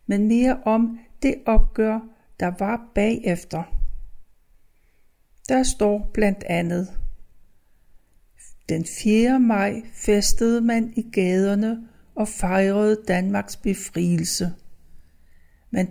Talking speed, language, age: 90 wpm, Danish, 60-79